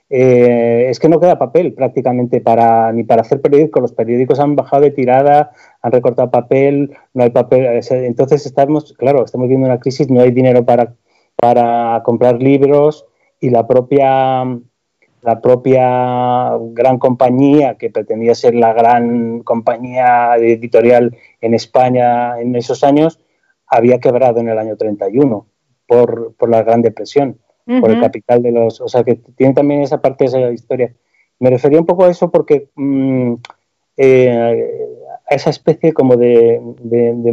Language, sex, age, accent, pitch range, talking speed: Spanish, male, 30-49, Spanish, 120-145 Hz, 160 wpm